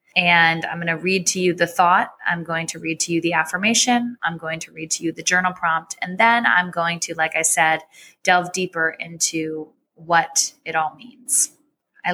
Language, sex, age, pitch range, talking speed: English, female, 20-39, 160-185 Hz, 210 wpm